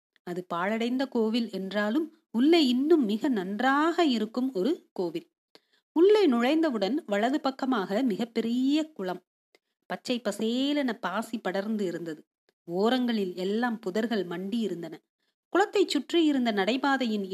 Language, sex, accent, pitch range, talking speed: Tamil, female, native, 200-275 Hz, 110 wpm